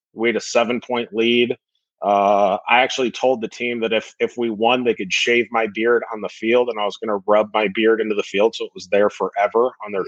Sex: male